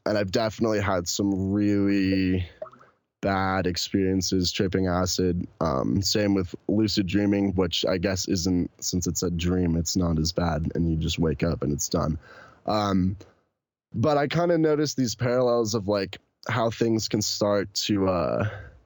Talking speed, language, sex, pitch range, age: 160 wpm, English, male, 90-110 Hz, 10-29